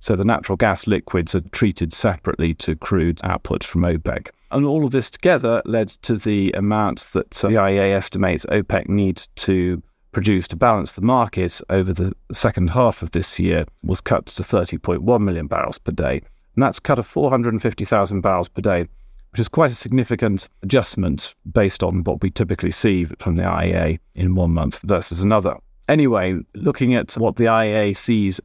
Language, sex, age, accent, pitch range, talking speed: English, male, 40-59, British, 90-115 Hz, 175 wpm